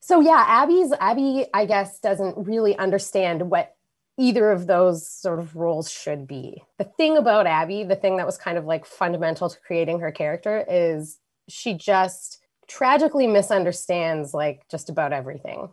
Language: English